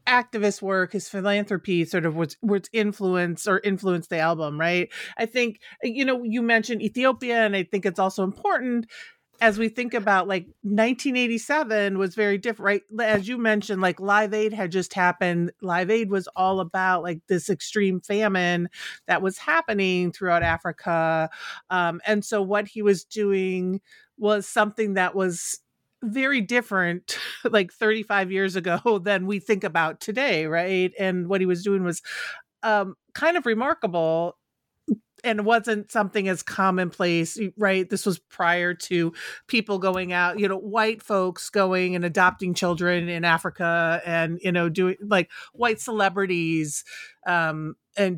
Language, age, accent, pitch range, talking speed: English, 40-59, American, 175-215 Hz, 155 wpm